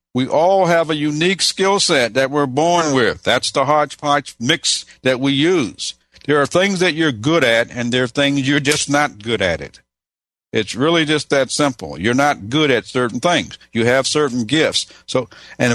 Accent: American